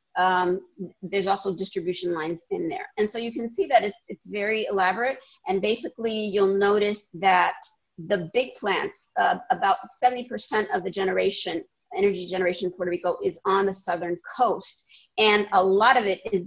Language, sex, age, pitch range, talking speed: English, female, 40-59, 185-210 Hz, 170 wpm